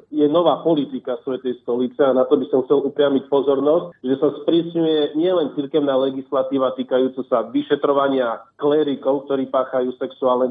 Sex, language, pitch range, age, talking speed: male, Slovak, 130-150 Hz, 50-69, 150 wpm